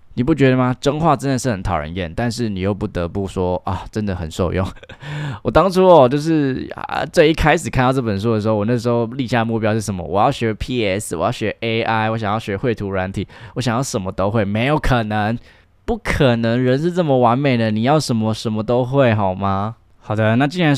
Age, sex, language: 20-39, male, Chinese